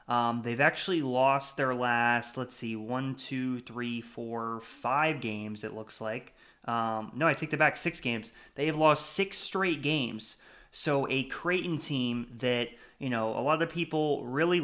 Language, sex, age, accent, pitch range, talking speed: English, male, 20-39, American, 120-145 Hz, 170 wpm